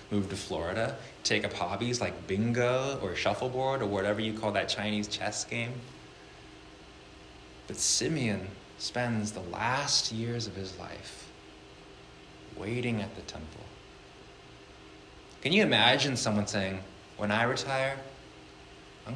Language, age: English, 20-39